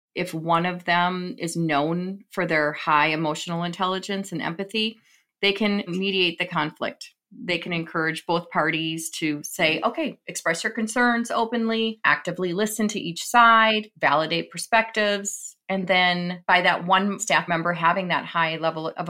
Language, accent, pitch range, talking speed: English, American, 165-200 Hz, 155 wpm